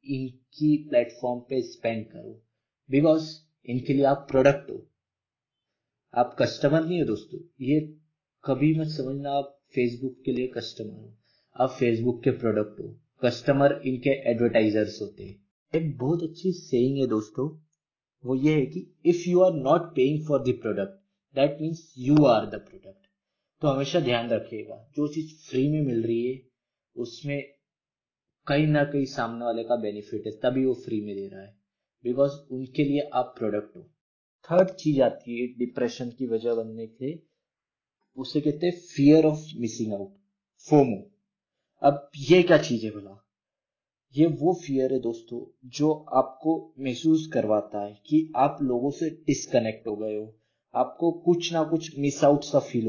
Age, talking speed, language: 20-39, 160 wpm, Hindi